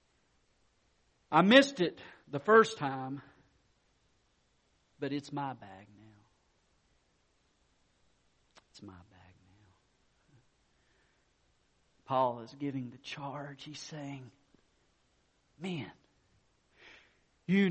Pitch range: 125-195 Hz